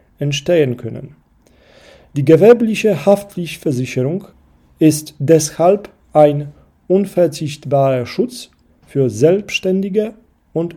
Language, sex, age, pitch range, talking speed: German, male, 40-59, 135-180 Hz, 70 wpm